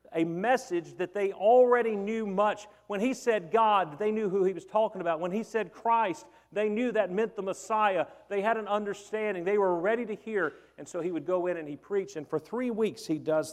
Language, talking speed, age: English, 230 wpm, 50-69